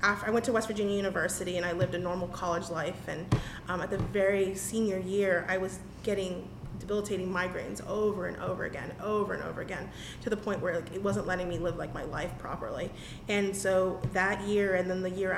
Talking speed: 210 wpm